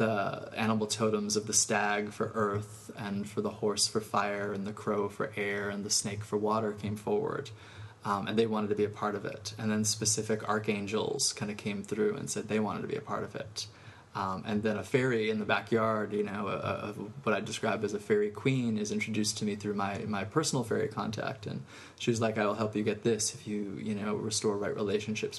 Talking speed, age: 235 wpm, 20-39